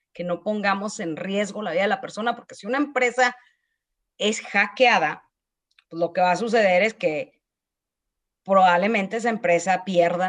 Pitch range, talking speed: 200-260 Hz, 165 wpm